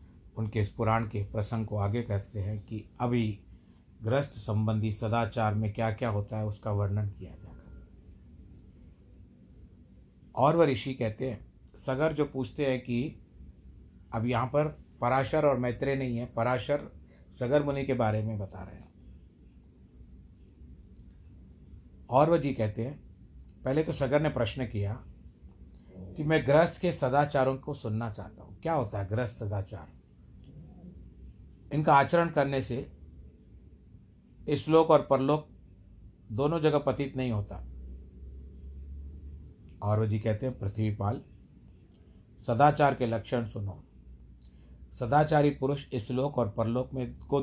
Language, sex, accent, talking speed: Hindi, male, native, 130 wpm